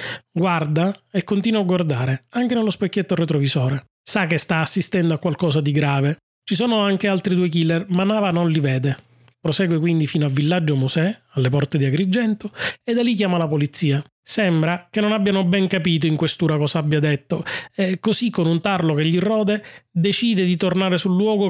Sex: male